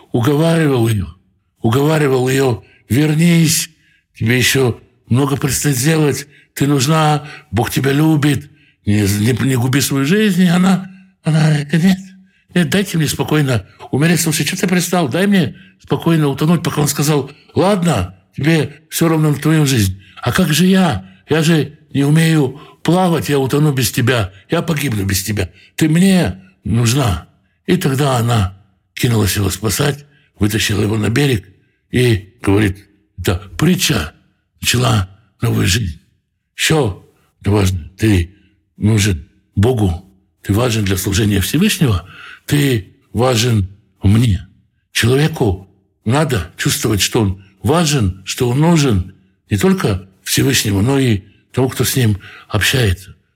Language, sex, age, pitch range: Russian, male, 60-79, 100-150 Hz